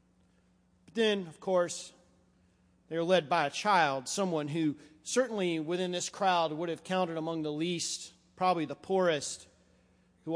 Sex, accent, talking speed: male, American, 145 wpm